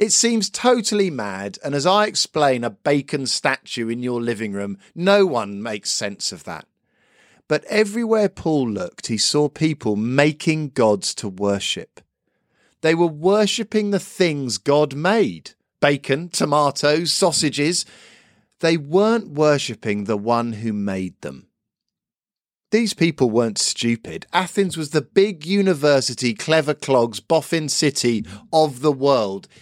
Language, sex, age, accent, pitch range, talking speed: English, male, 50-69, British, 115-175 Hz, 135 wpm